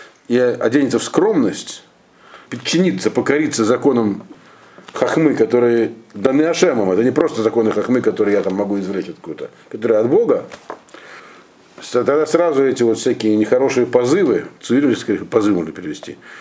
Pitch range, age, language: 115-155 Hz, 50-69, Russian